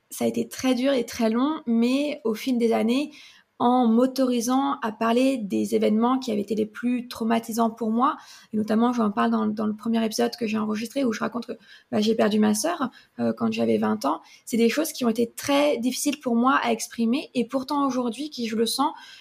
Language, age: French, 20-39